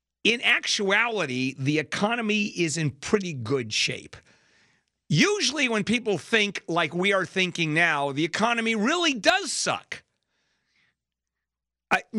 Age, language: 50-69, English